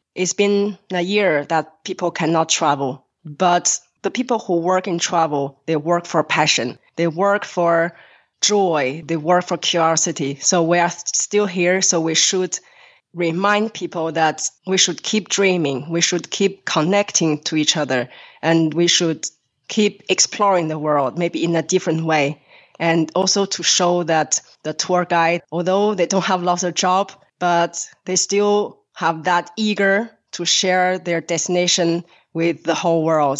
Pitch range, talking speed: 160-185 Hz, 160 wpm